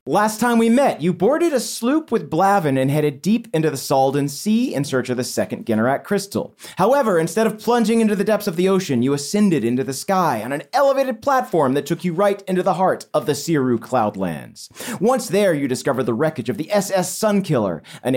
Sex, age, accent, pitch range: male, 30-49, American, 135-215 Hz